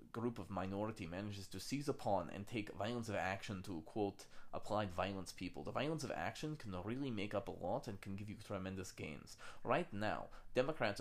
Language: English